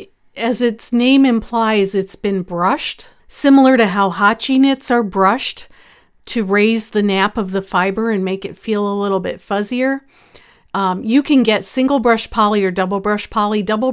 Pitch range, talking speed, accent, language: 195-235 Hz, 175 wpm, American, English